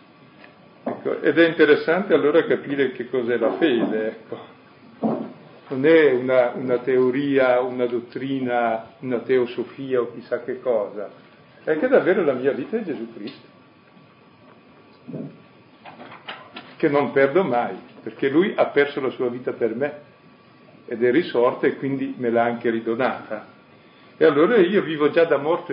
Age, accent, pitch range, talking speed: 50-69, native, 125-160 Hz, 140 wpm